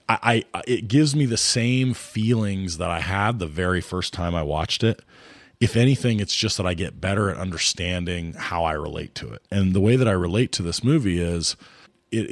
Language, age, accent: English, 20-39, American